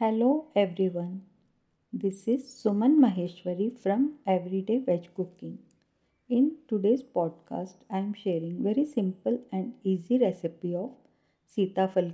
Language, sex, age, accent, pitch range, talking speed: Hindi, female, 50-69, native, 175-225 Hz, 115 wpm